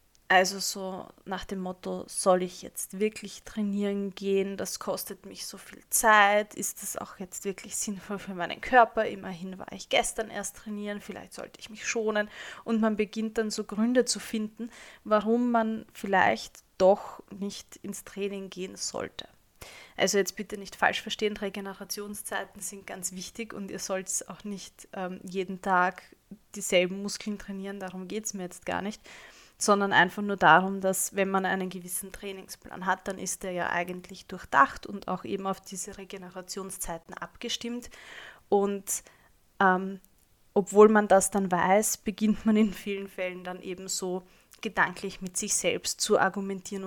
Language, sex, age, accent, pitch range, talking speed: German, female, 20-39, German, 190-215 Hz, 165 wpm